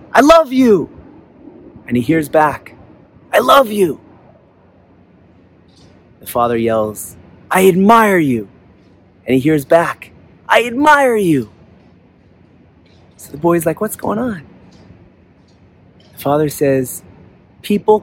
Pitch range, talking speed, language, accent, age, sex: 100-165 Hz, 115 wpm, English, American, 30-49, male